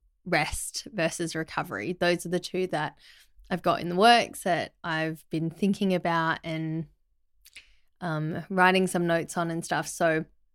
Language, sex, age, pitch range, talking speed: English, female, 20-39, 170-200 Hz, 155 wpm